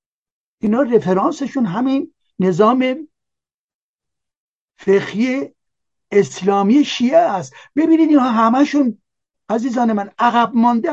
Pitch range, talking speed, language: 200-255 Hz, 80 wpm, Persian